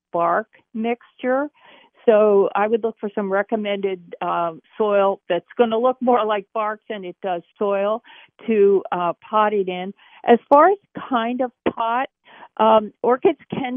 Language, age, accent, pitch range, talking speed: English, 50-69, American, 195-240 Hz, 155 wpm